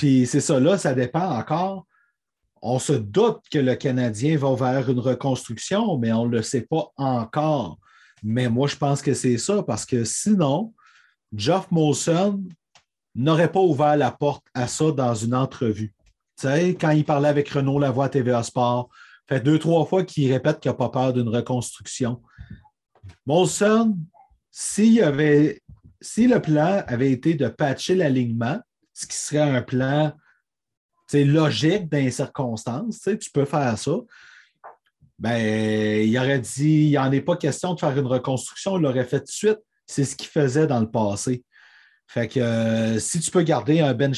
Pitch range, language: 120-155 Hz, French